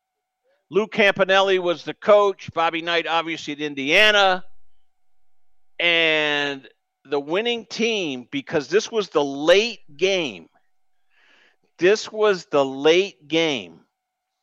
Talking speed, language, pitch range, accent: 105 wpm, English, 150-210 Hz, American